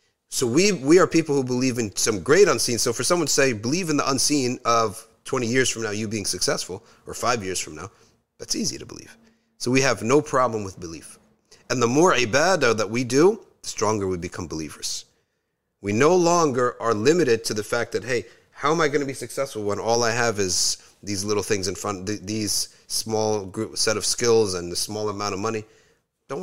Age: 30-49